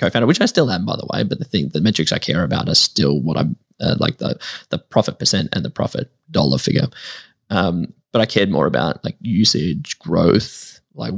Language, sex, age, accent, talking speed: English, male, 10-29, Australian, 220 wpm